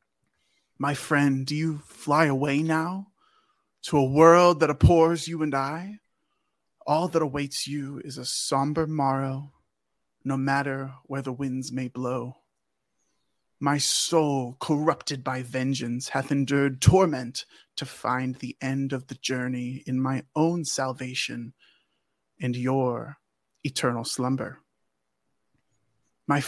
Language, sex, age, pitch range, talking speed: English, male, 20-39, 125-155 Hz, 120 wpm